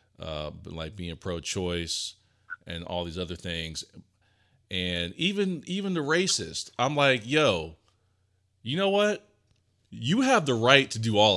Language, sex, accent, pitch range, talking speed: English, male, American, 90-115 Hz, 145 wpm